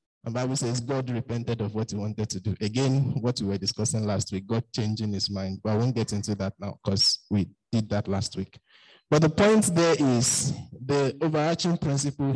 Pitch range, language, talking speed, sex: 105-135 Hz, English, 210 wpm, male